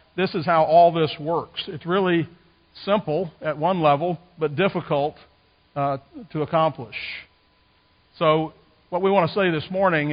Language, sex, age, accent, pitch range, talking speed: English, male, 50-69, American, 125-165 Hz, 150 wpm